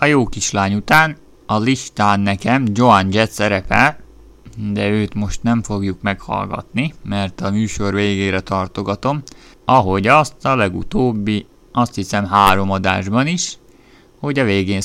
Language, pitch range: Hungarian, 100-120 Hz